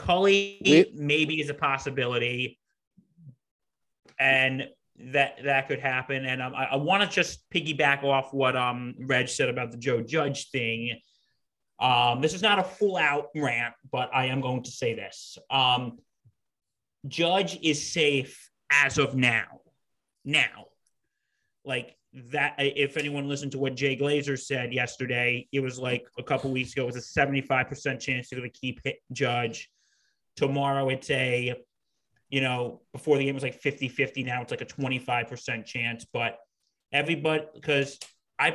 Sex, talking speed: male, 155 wpm